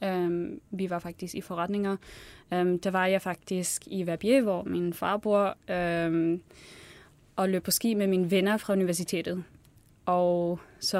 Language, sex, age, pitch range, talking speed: Danish, female, 20-39, 170-195 Hz, 155 wpm